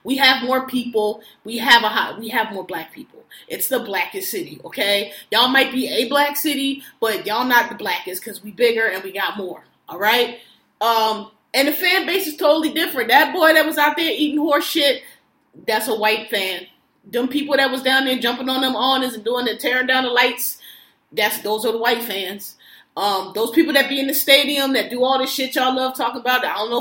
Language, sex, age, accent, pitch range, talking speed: English, female, 30-49, American, 225-270 Hz, 230 wpm